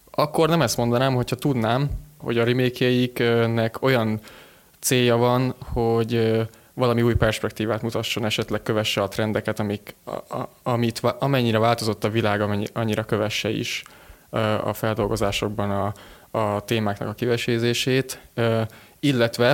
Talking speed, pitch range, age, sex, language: 110 wpm, 105-120 Hz, 20-39, male, Hungarian